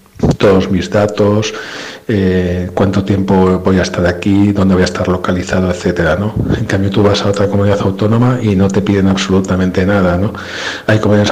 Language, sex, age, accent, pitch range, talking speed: Spanish, male, 50-69, Spanish, 95-110 Hz, 180 wpm